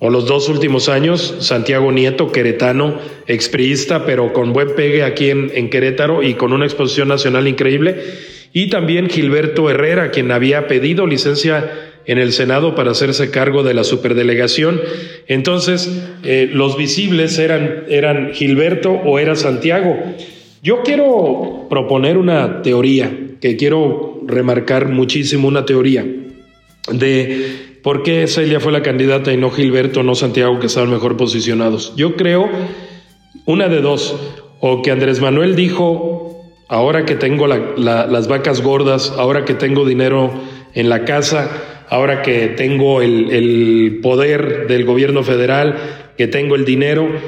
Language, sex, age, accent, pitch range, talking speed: Spanish, male, 40-59, Mexican, 130-155 Hz, 145 wpm